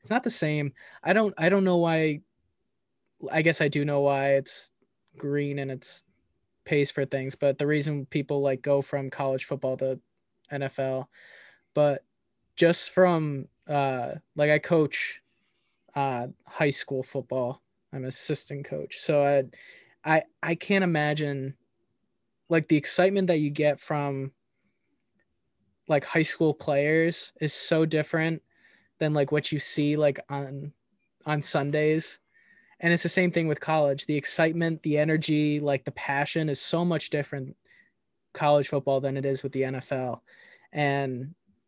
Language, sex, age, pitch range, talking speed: English, male, 20-39, 140-160 Hz, 150 wpm